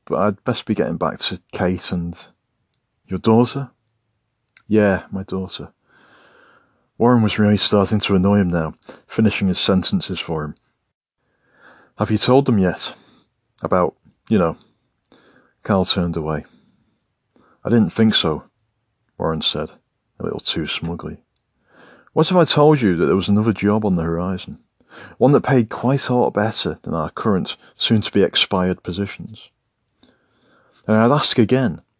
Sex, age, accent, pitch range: male, 40-59, British, 90-120 Hz